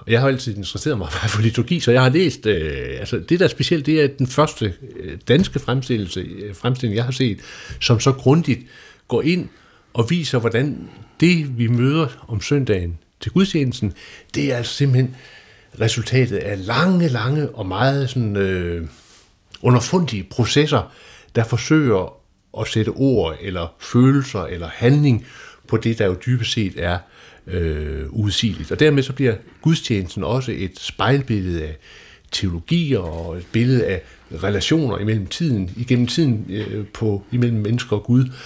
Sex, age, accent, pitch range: male, 60-79, native, 105-135 Hz